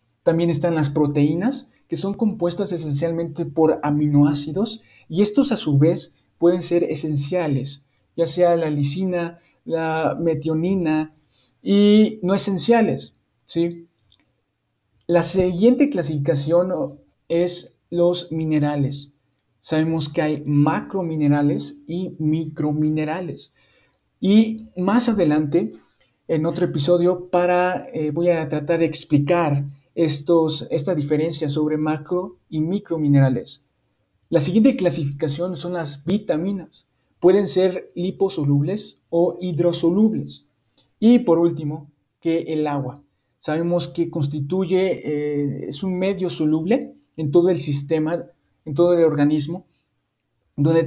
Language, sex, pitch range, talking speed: Spanish, male, 150-180 Hz, 110 wpm